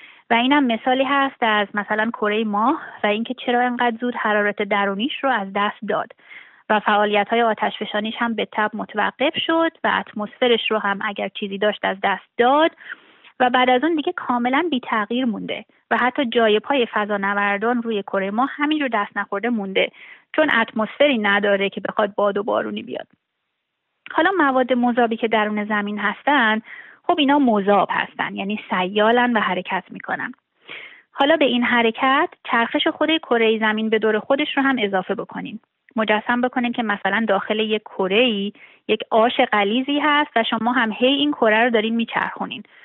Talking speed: 165 wpm